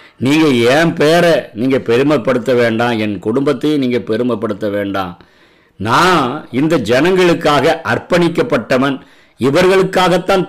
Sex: male